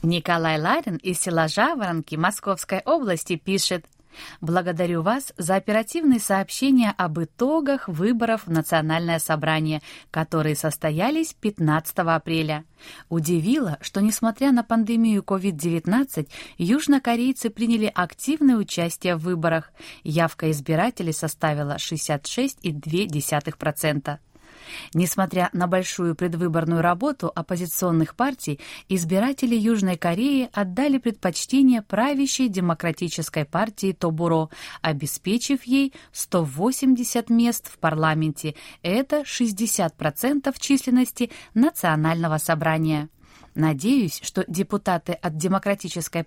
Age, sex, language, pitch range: 20-39, female, Russian, 160-230 Hz